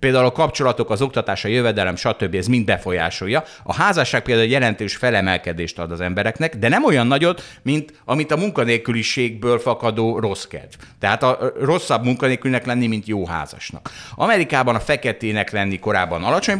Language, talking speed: Hungarian, 160 wpm